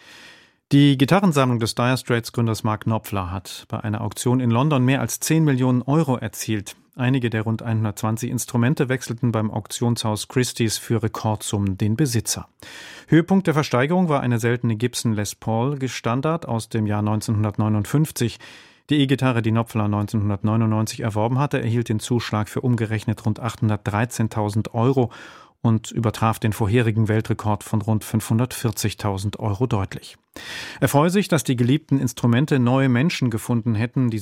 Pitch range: 110-130 Hz